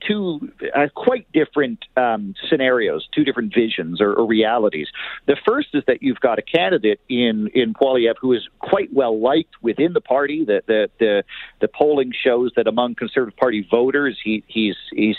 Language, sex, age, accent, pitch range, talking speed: English, male, 50-69, American, 115-170 Hz, 175 wpm